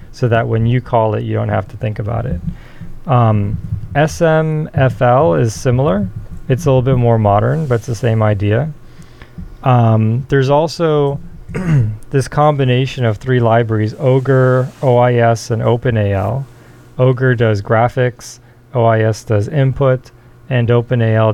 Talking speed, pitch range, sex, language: 135 wpm, 110-125 Hz, male, English